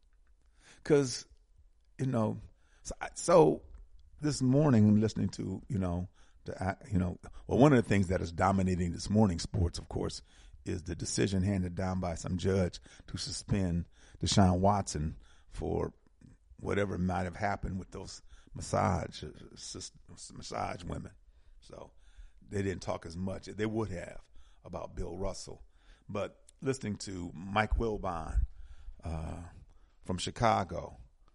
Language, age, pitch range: English, 50-69, 80-100 Hz